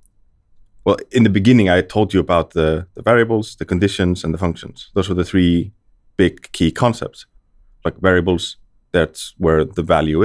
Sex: male